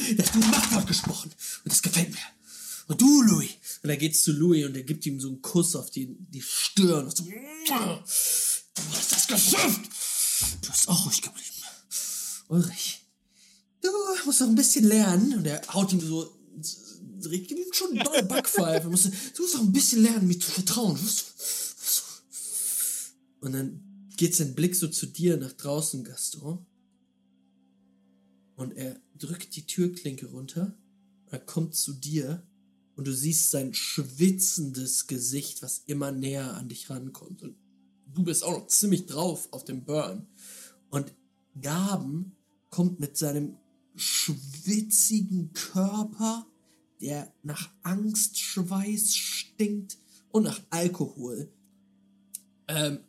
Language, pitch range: German, 140-200 Hz